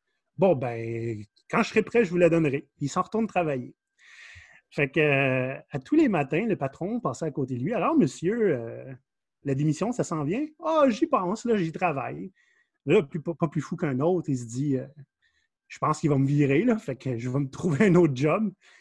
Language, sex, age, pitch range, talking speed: French, male, 30-49, 140-185 Hz, 245 wpm